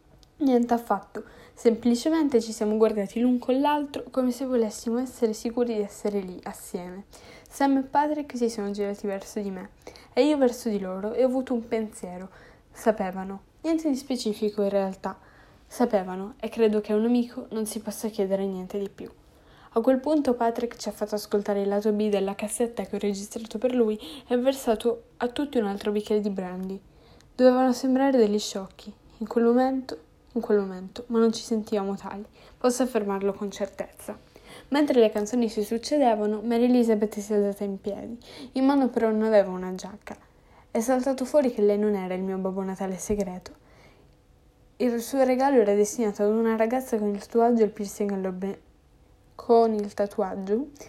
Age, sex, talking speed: 10-29, female, 170 wpm